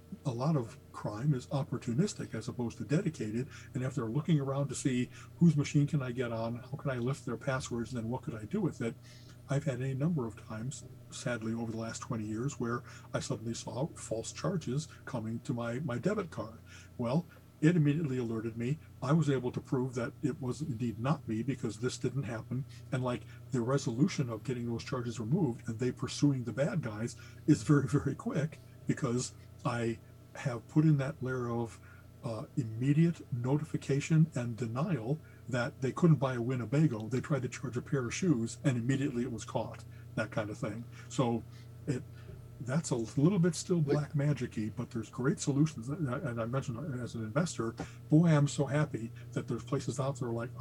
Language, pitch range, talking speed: English, 120-145 Hz, 200 wpm